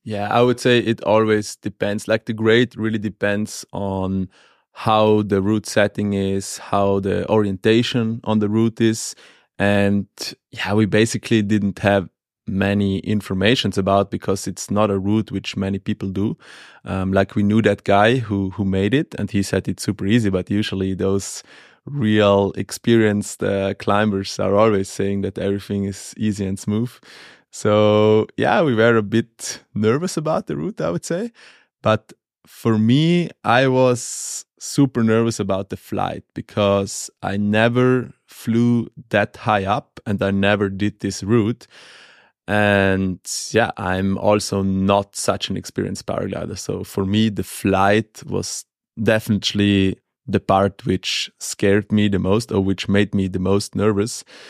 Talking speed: 155 wpm